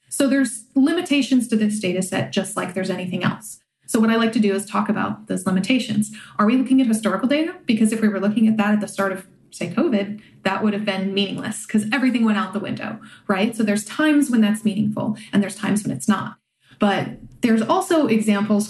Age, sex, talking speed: 20-39, female, 225 wpm